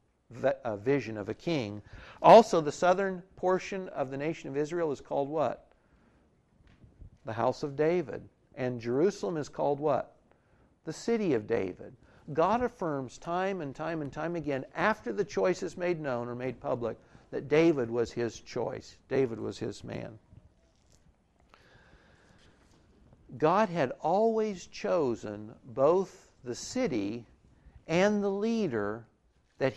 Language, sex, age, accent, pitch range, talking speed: English, male, 60-79, American, 120-180 Hz, 135 wpm